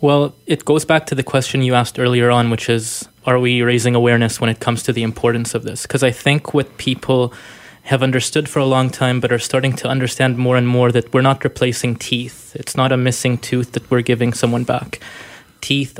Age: 20-39